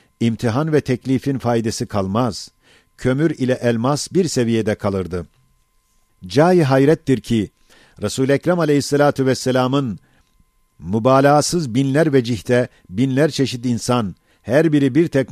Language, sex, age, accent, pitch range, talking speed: Turkish, male, 50-69, native, 115-140 Hz, 110 wpm